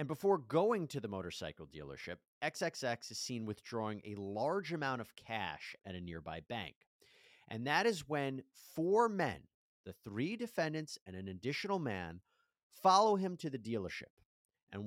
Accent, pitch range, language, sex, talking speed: American, 105-170 Hz, English, male, 155 wpm